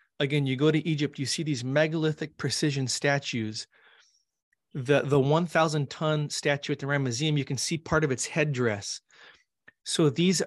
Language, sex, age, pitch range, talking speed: English, male, 30-49, 135-160 Hz, 155 wpm